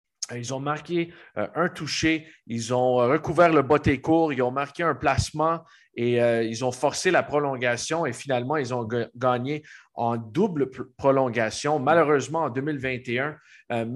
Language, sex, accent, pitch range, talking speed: French, male, Canadian, 120-150 Hz, 155 wpm